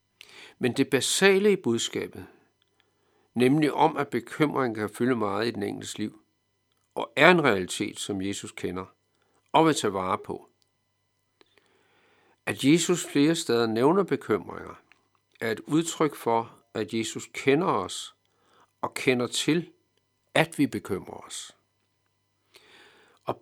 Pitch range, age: 105-145 Hz, 60-79